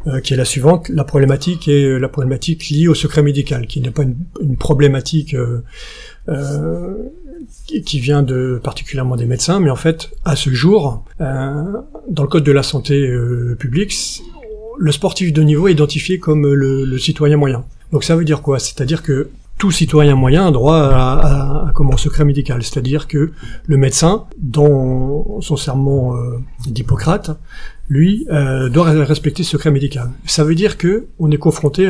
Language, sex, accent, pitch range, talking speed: French, male, French, 130-160 Hz, 180 wpm